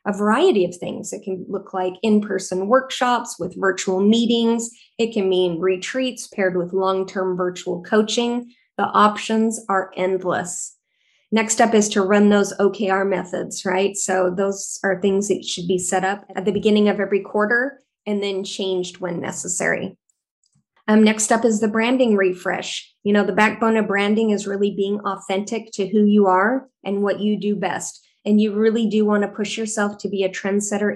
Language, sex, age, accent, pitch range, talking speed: English, female, 20-39, American, 190-215 Hz, 180 wpm